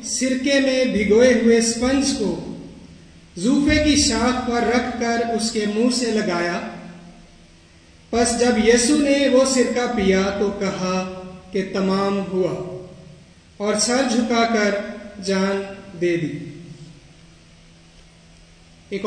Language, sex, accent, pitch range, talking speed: English, male, Indian, 175-240 Hz, 105 wpm